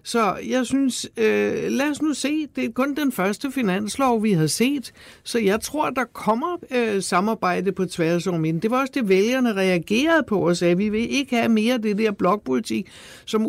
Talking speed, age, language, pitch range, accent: 205 wpm, 60-79, Danish, 185-235 Hz, native